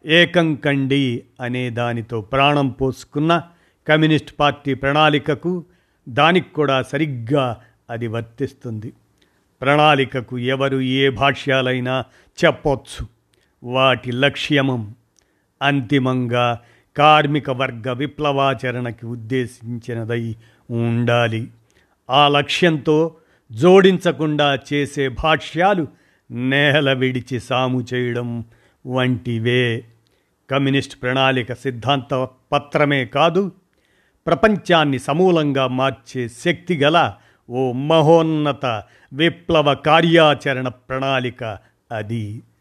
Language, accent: Telugu, native